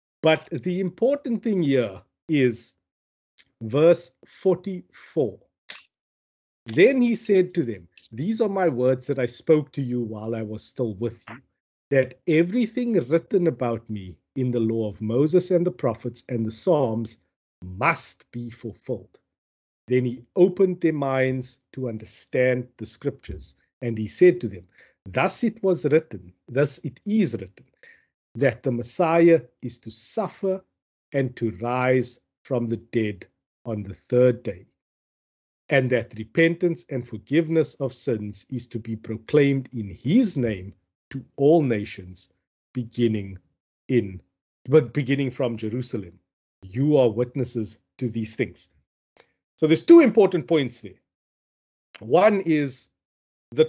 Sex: male